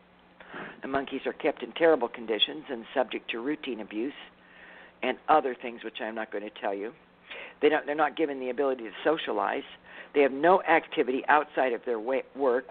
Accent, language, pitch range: American, English, 125-155 Hz